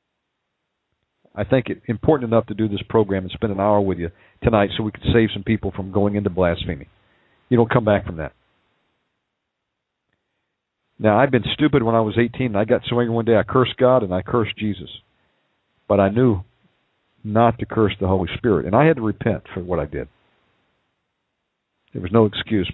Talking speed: 200 wpm